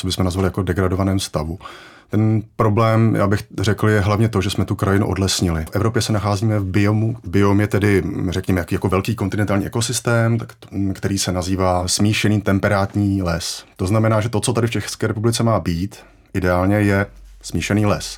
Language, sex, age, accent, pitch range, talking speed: Czech, male, 30-49, native, 95-110 Hz, 180 wpm